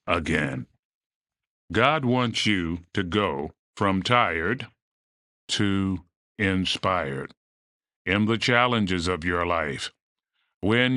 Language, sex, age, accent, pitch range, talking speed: English, male, 40-59, American, 95-125 Hz, 95 wpm